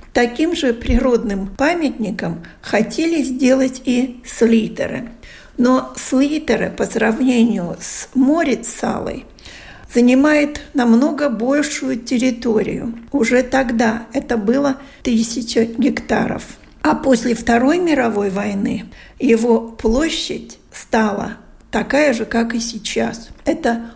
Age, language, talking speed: 50-69, Russian, 95 wpm